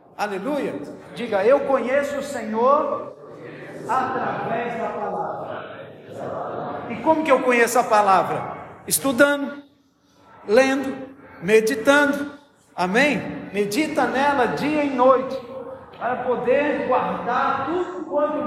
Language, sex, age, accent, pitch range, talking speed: Portuguese, male, 50-69, Brazilian, 215-280 Hz, 95 wpm